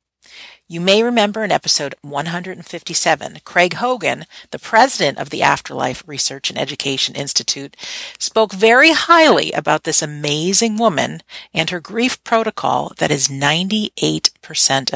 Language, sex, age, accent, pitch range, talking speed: English, female, 50-69, American, 150-200 Hz, 125 wpm